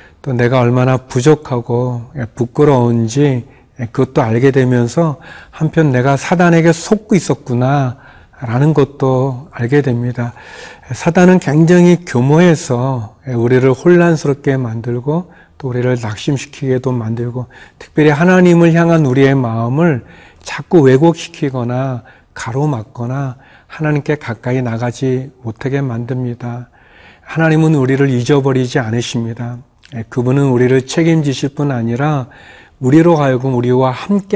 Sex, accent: male, native